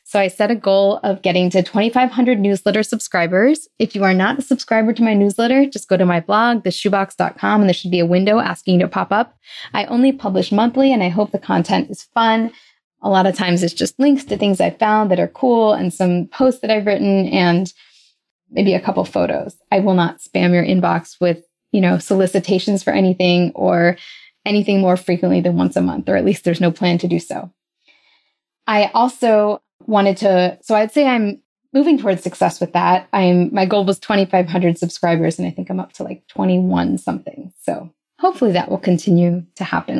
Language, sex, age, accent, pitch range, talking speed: English, female, 20-39, American, 180-225 Hz, 205 wpm